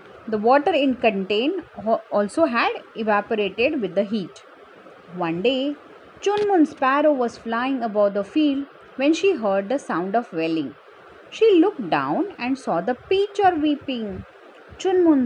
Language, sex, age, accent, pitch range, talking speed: English, female, 30-49, Indian, 235-340 Hz, 140 wpm